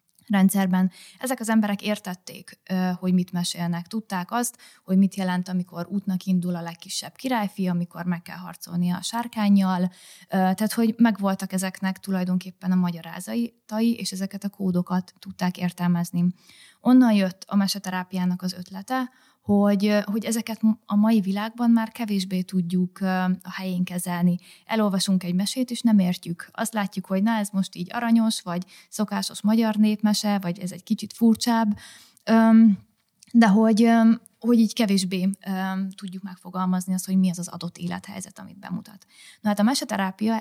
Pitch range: 185-215 Hz